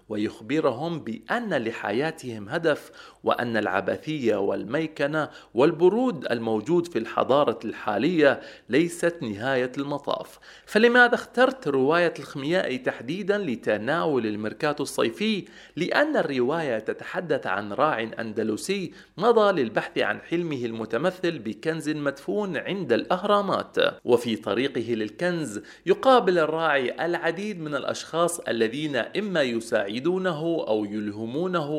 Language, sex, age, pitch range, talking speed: Arabic, male, 40-59, 130-185 Hz, 95 wpm